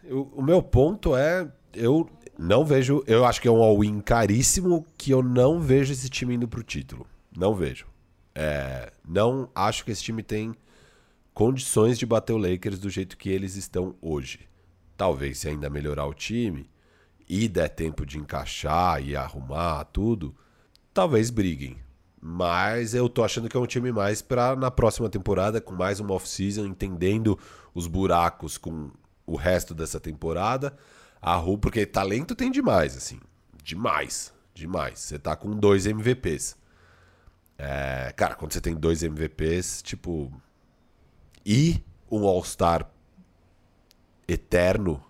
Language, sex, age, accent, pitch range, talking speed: Portuguese, male, 40-59, Brazilian, 80-115 Hz, 150 wpm